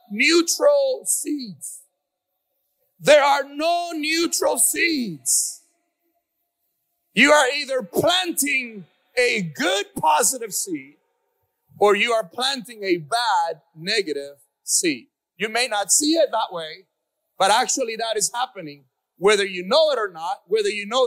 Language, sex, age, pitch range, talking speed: English, male, 40-59, 210-300 Hz, 125 wpm